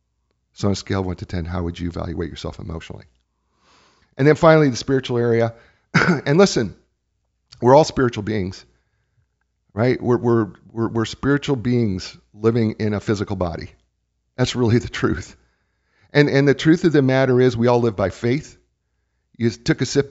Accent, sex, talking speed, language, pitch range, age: American, male, 175 wpm, English, 105-140 Hz, 50-69